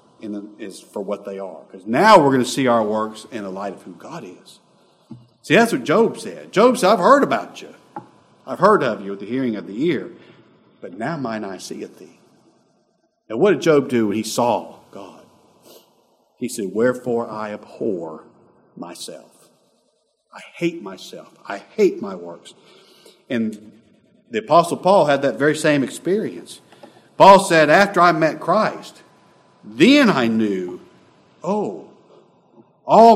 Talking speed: 160 wpm